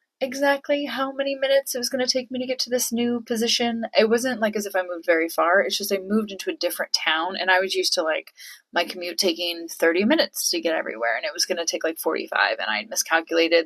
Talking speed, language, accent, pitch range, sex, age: 260 wpm, English, American, 170-230 Hz, female, 20-39